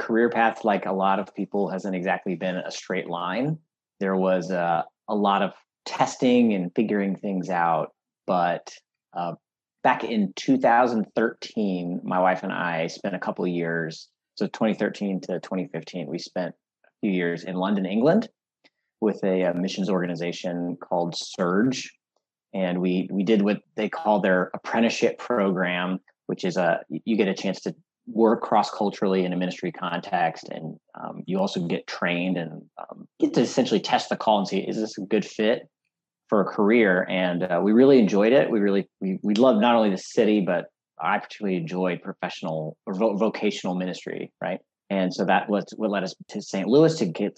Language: English